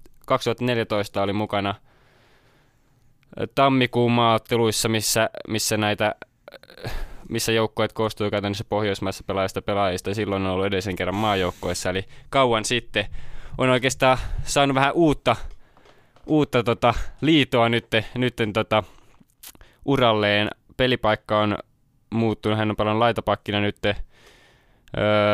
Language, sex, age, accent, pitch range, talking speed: Finnish, male, 20-39, native, 100-120 Hz, 105 wpm